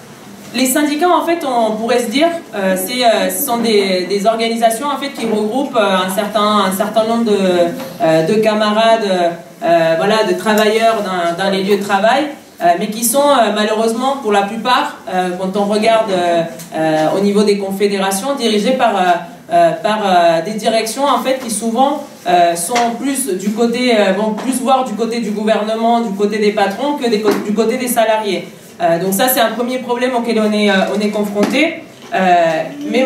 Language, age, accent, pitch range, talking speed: French, 20-39, French, 200-240 Hz, 195 wpm